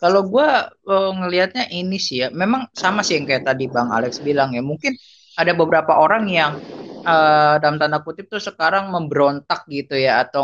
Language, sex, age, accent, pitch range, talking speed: Indonesian, female, 20-39, native, 150-185 Hz, 180 wpm